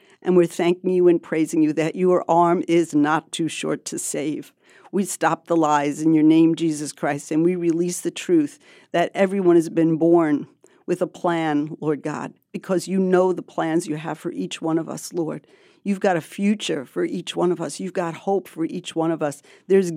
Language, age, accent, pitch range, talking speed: English, 50-69, American, 160-190 Hz, 215 wpm